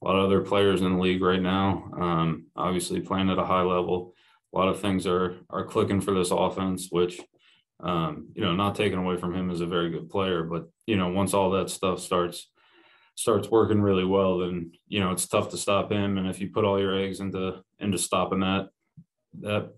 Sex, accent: male, American